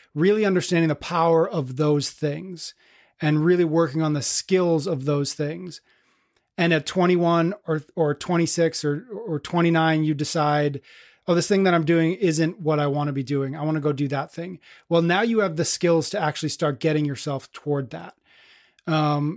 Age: 30-49